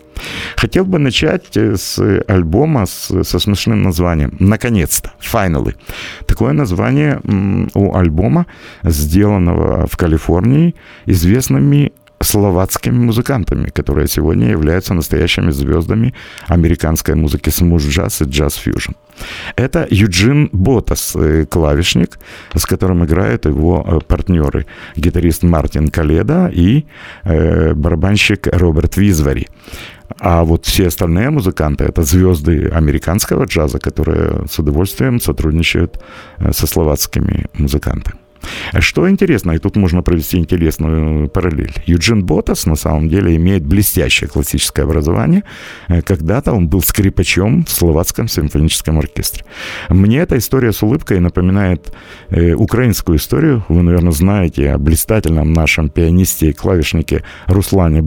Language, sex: Russian, male